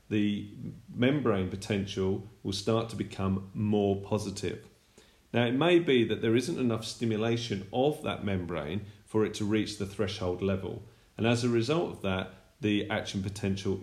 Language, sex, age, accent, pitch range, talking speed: English, male, 40-59, British, 95-115 Hz, 160 wpm